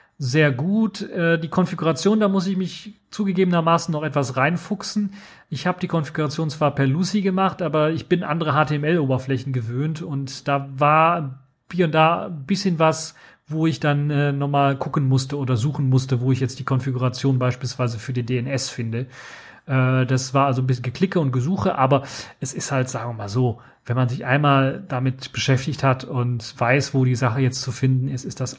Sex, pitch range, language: male, 130-155 Hz, German